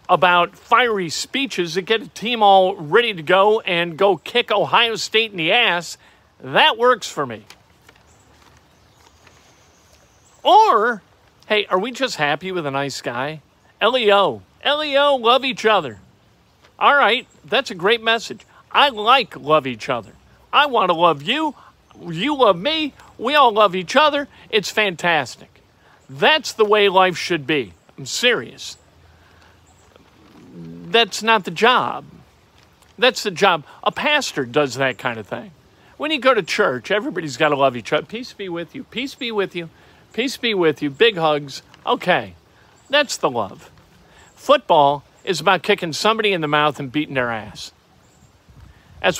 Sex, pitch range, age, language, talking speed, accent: male, 150-220 Hz, 50-69, English, 155 wpm, American